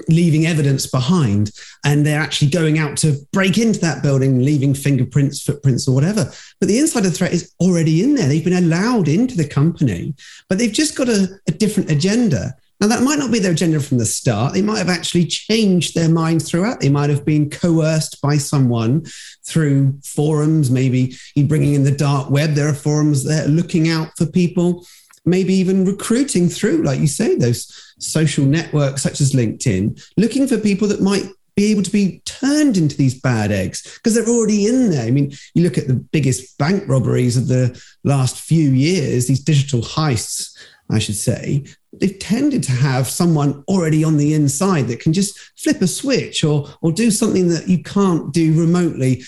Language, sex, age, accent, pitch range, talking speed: English, male, 30-49, British, 140-185 Hz, 190 wpm